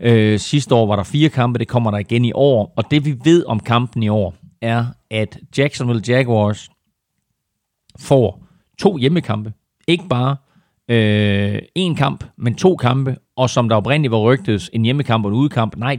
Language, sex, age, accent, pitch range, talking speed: Danish, male, 40-59, native, 110-135 Hz, 175 wpm